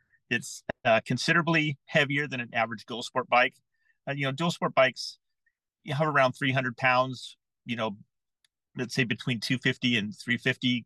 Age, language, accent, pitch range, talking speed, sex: 40-59, English, American, 120-150 Hz, 160 wpm, male